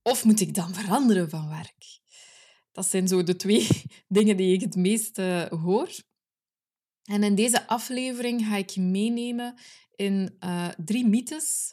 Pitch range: 185-220 Hz